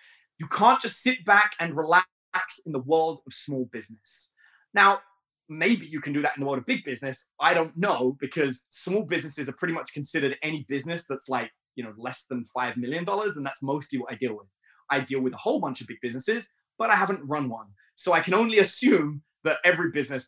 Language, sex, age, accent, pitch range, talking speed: English, male, 20-39, British, 130-180 Hz, 220 wpm